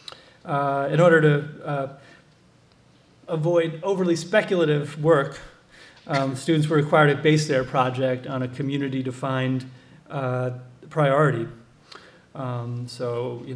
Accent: American